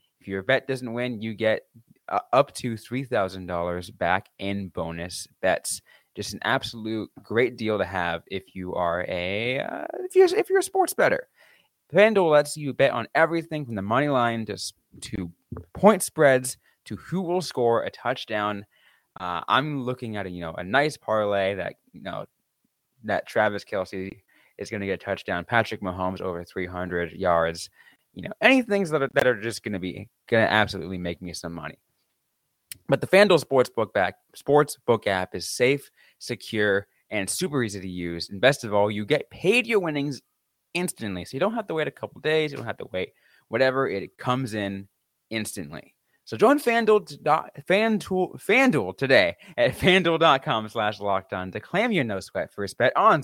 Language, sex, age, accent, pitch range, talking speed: English, male, 20-39, American, 100-155 Hz, 180 wpm